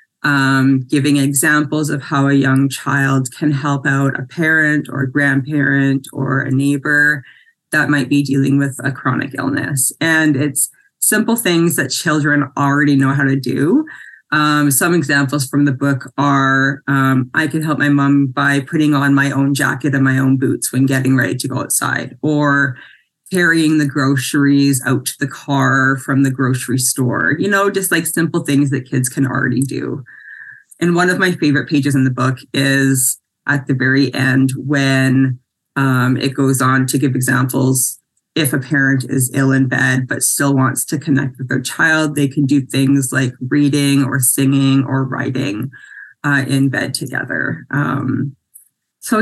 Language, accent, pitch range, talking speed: English, American, 135-150 Hz, 175 wpm